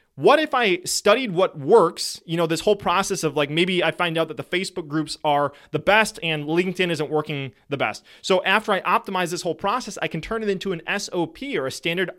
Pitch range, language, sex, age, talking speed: 160-200 Hz, English, male, 30-49, 230 wpm